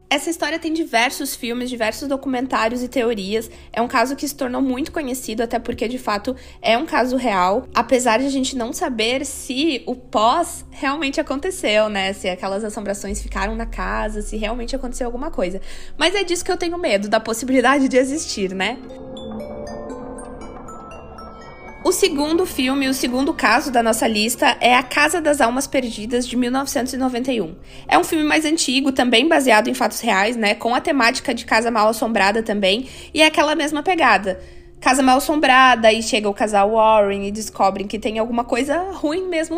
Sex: female